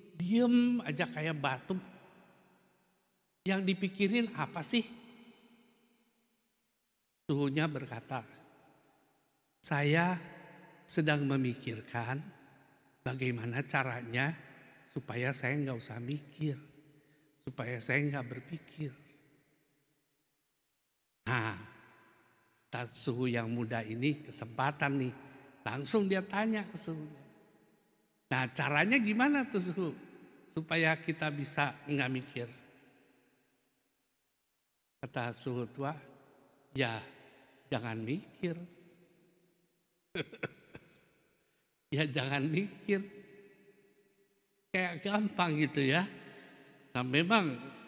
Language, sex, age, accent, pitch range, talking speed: Indonesian, male, 50-69, native, 135-180 Hz, 75 wpm